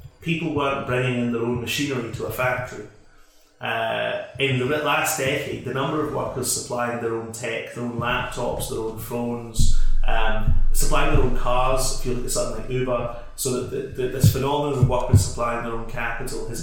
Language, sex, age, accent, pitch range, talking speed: English, male, 30-49, British, 120-140 Hz, 195 wpm